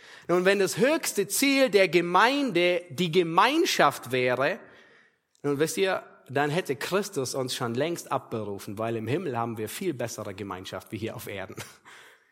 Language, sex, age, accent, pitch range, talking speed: German, male, 30-49, German, 125-175 Hz, 155 wpm